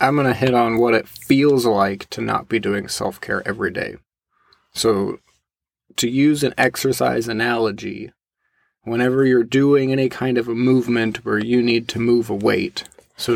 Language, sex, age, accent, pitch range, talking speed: English, male, 20-39, American, 120-130 Hz, 170 wpm